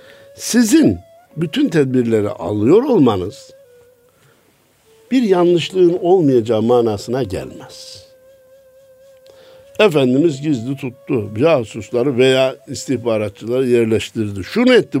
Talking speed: 75 wpm